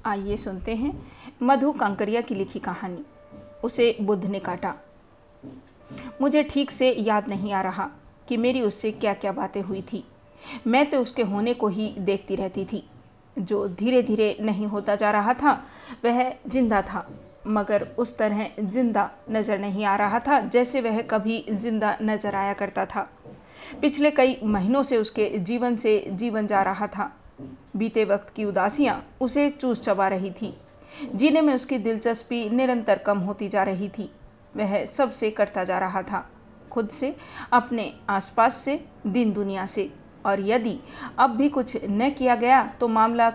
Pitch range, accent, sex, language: 200-250 Hz, native, female, Hindi